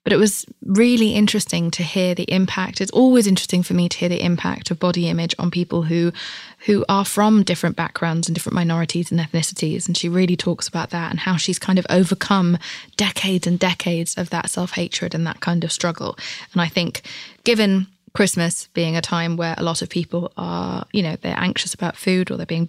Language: English